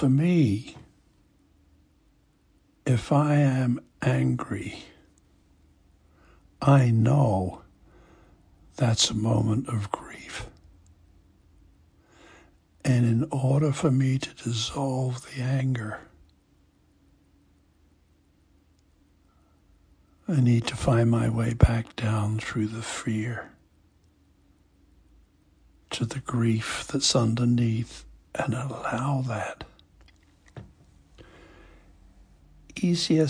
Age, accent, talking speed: 60-79, American, 75 wpm